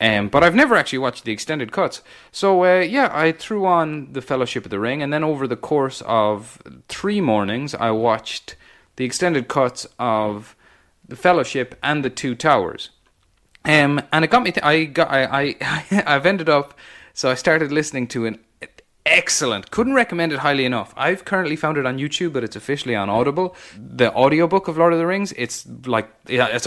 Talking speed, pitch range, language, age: 190 wpm, 105-150 Hz, English, 30-49